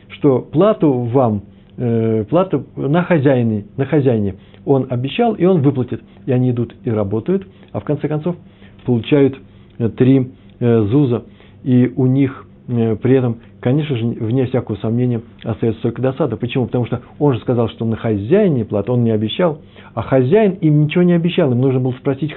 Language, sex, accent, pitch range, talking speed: Russian, male, native, 110-140 Hz, 165 wpm